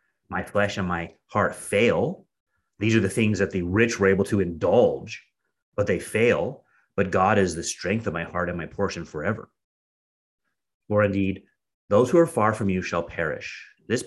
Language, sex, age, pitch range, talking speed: English, male, 30-49, 95-120 Hz, 185 wpm